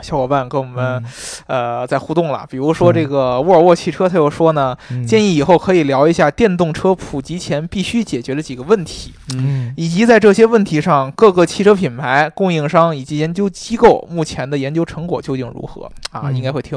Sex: male